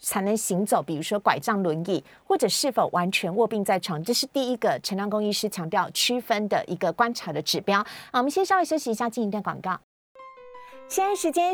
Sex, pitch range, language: female, 200-275 Hz, Chinese